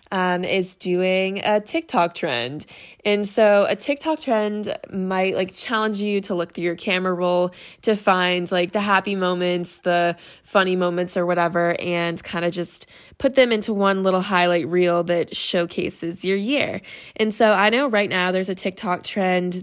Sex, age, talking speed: female, 20-39, 175 wpm